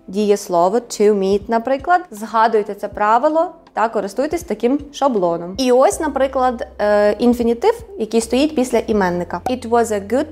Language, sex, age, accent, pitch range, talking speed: Ukrainian, female, 20-39, native, 210-280 Hz, 140 wpm